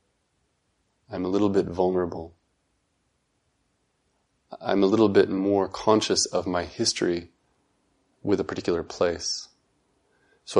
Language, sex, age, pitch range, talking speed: English, male, 30-49, 85-95 Hz, 110 wpm